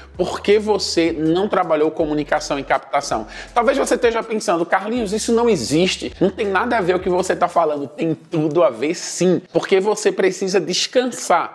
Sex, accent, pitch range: male, Brazilian, 160-215 Hz